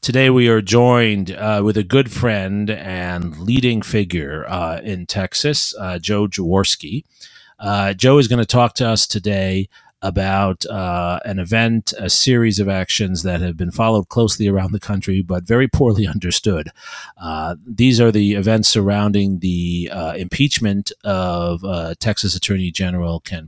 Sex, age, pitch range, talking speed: male, 40-59, 85-110 Hz, 160 wpm